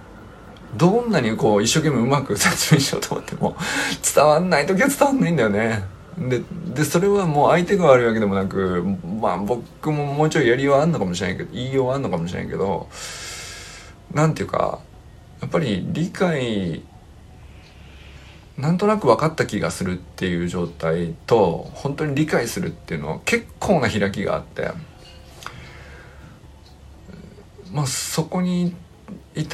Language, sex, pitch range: Japanese, male, 95-155 Hz